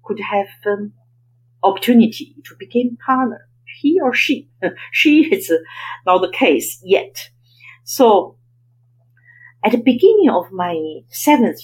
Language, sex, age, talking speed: English, female, 50-69, 125 wpm